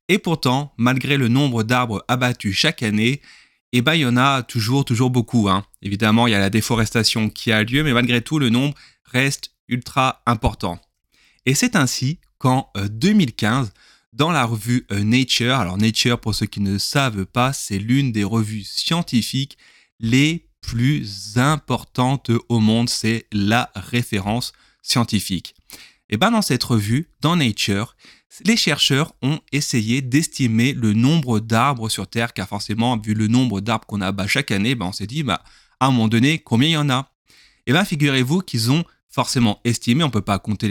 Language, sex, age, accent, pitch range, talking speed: French, male, 30-49, French, 110-140 Hz, 180 wpm